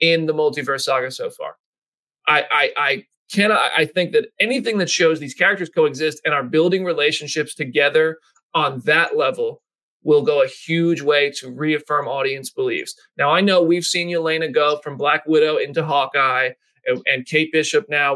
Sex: male